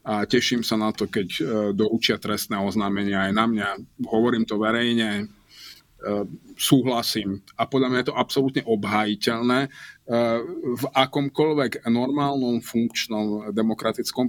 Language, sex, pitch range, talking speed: Slovak, male, 110-135 Hz, 120 wpm